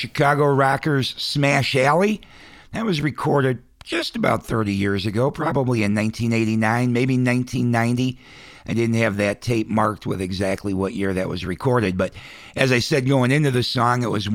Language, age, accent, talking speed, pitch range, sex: English, 50-69, American, 165 wpm, 105-130 Hz, male